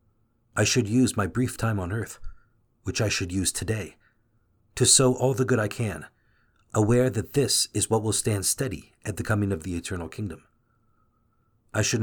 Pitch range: 105-115 Hz